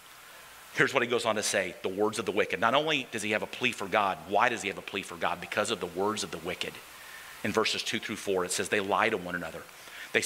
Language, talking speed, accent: English, 285 wpm, American